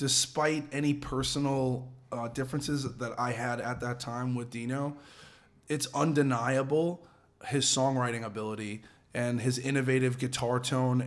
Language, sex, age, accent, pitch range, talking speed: English, male, 20-39, American, 120-135 Hz, 125 wpm